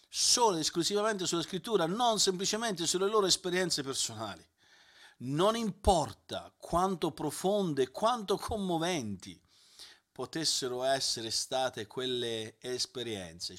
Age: 50-69